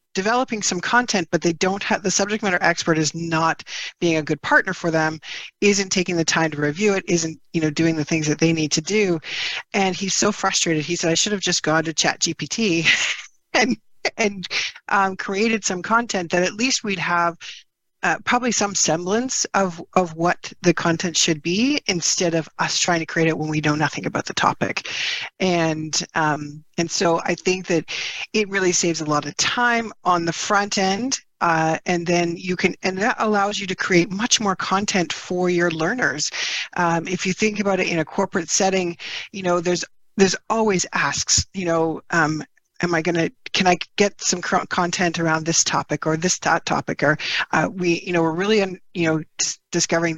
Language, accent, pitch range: English, American, 165-195 Hz